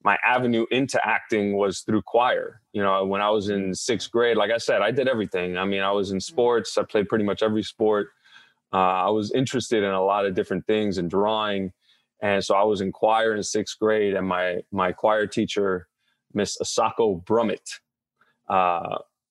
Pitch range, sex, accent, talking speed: 100-120 Hz, male, American, 200 wpm